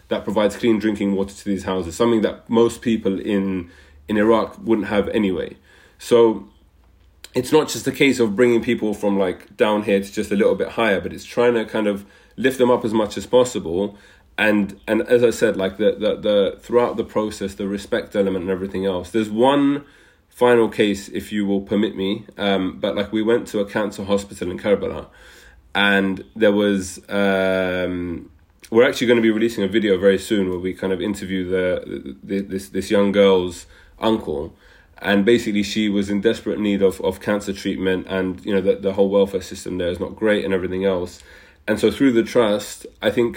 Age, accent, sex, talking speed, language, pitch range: 30-49, British, male, 205 wpm, English, 95-110 Hz